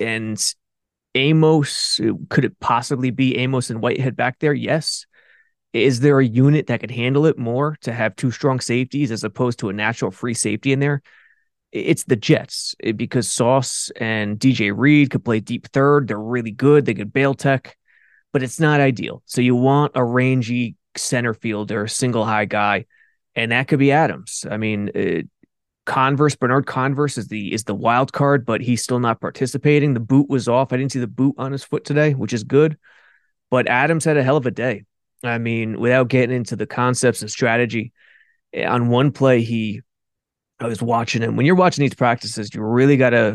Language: English